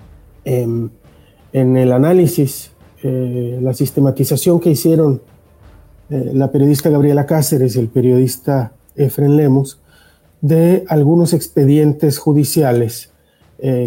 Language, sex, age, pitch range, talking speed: Spanish, male, 40-59, 125-150 Hz, 105 wpm